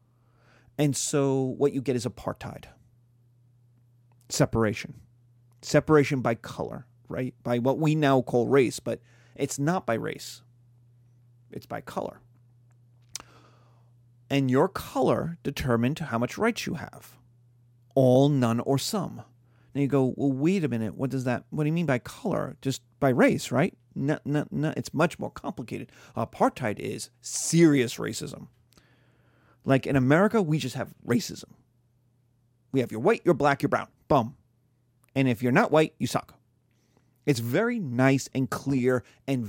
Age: 30-49